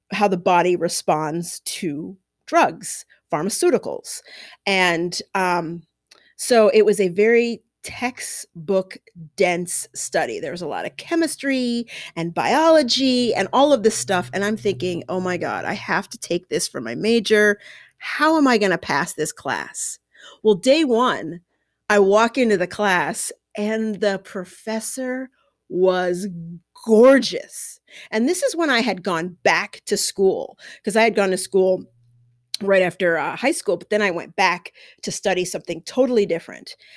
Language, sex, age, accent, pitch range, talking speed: English, female, 40-59, American, 180-265 Hz, 155 wpm